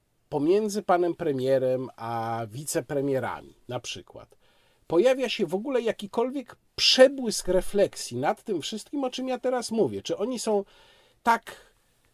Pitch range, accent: 140-220 Hz, native